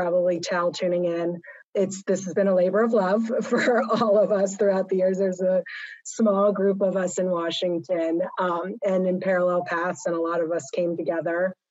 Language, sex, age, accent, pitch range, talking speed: English, female, 30-49, American, 170-200 Hz, 200 wpm